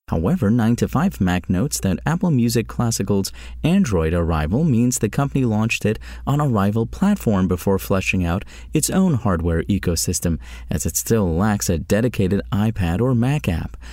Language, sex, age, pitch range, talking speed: English, male, 30-49, 90-125 Hz, 150 wpm